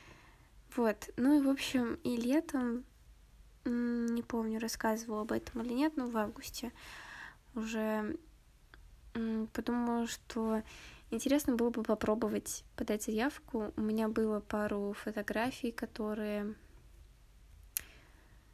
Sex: female